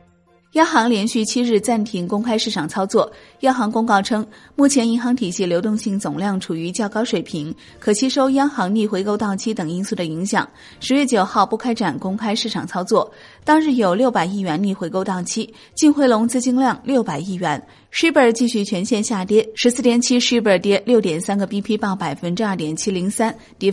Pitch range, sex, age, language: 195-245 Hz, female, 30-49, Chinese